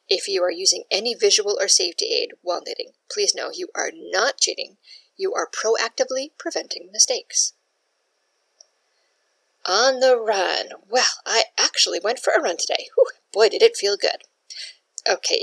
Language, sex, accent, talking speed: English, female, American, 150 wpm